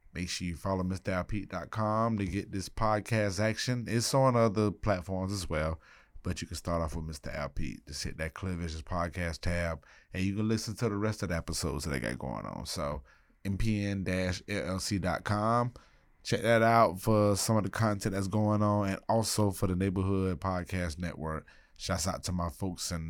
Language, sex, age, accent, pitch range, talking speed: English, male, 20-39, American, 80-105 Hz, 185 wpm